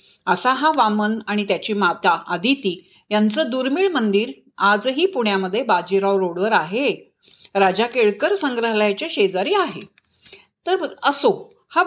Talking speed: 115 wpm